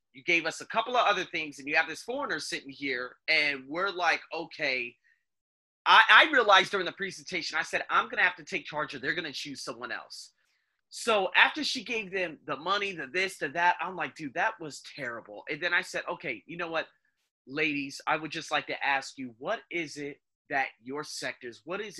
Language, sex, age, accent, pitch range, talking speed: English, male, 30-49, American, 135-180 Hz, 225 wpm